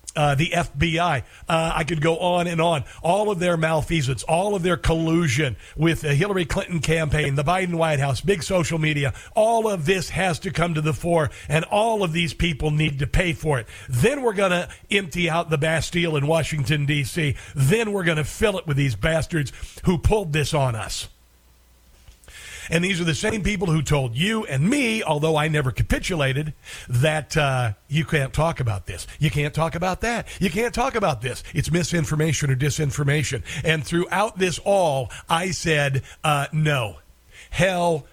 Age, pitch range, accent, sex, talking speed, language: 50-69, 135-170 Hz, American, male, 185 wpm, English